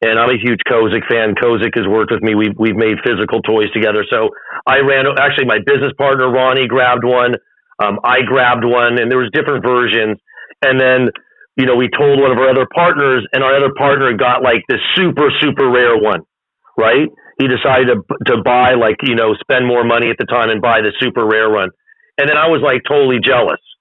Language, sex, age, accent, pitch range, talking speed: English, male, 40-59, American, 120-150 Hz, 220 wpm